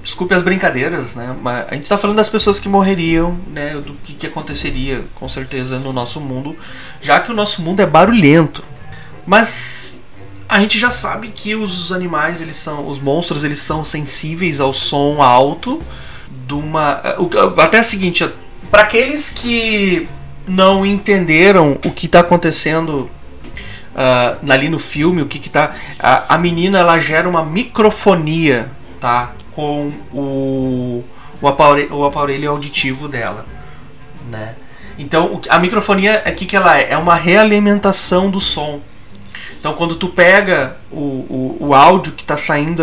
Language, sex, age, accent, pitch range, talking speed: Portuguese, male, 30-49, Brazilian, 135-180 Hz, 150 wpm